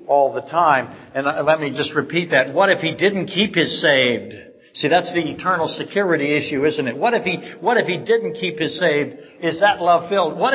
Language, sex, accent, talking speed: English, male, American, 245 wpm